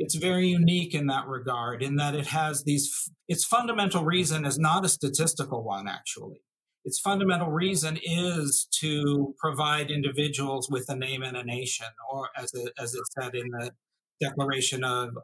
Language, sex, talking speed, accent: English, male, 170 wpm, American